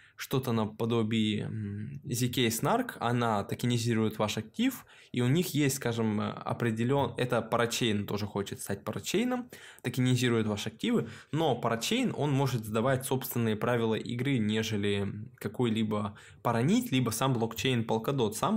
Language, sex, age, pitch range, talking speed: Russian, male, 10-29, 110-135 Hz, 125 wpm